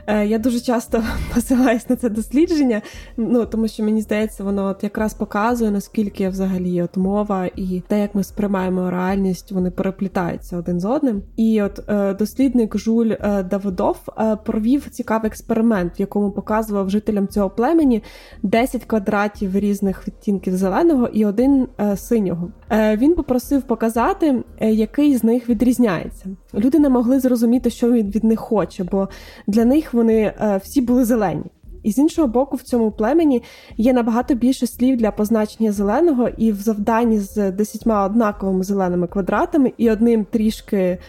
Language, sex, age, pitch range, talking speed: Ukrainian, female, 20-39, 200-245 Hz, 145 wpm